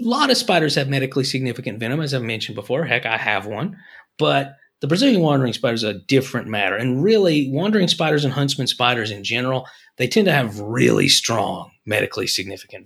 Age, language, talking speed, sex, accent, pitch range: 30-49, English, 195 wpm, male, American, 130-180 Hz